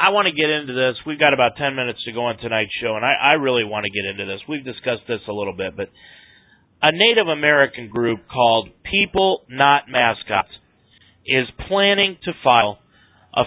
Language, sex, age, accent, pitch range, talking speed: English, male, 40-59, American, 120-170 Hz, 200 wpm